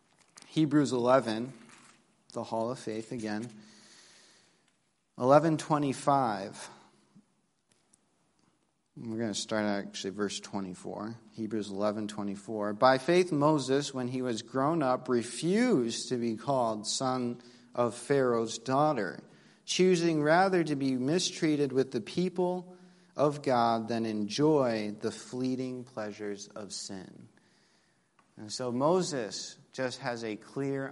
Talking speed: 110 wpm